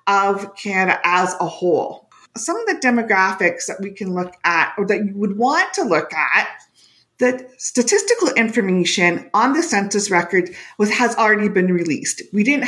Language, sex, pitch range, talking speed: English, female, 190-255 Hz, 165 wpm